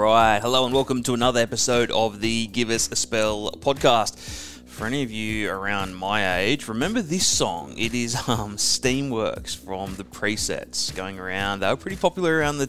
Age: 20-39